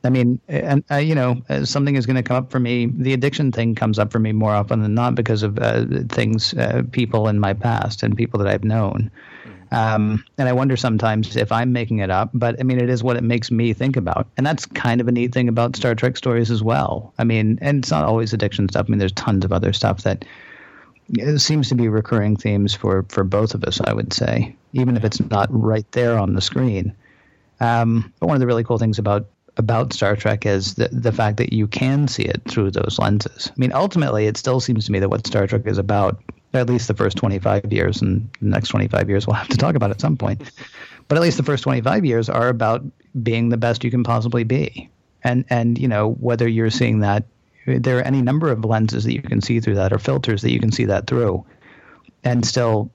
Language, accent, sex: English, American, male